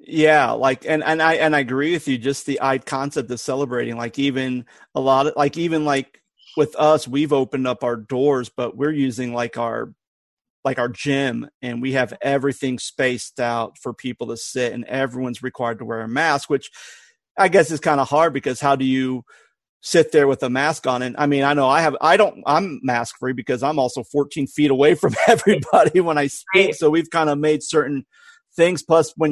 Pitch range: 130-150 Hz